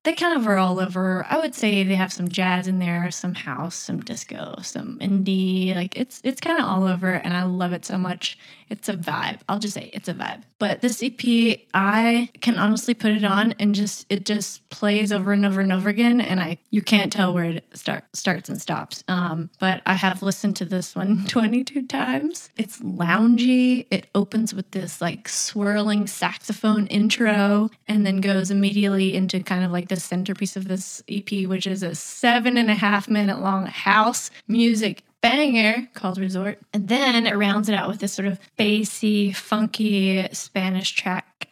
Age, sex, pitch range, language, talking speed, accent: 20-39, female, 190-220 Hz, English, 195 wpm, American